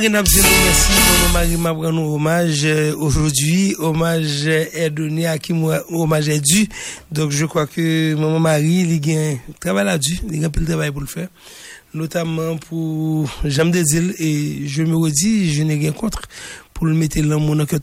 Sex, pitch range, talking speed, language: male, 155-175 Hz, 185 wpm, English